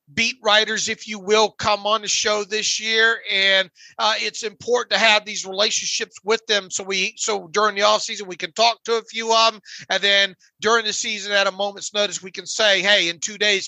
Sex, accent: male, American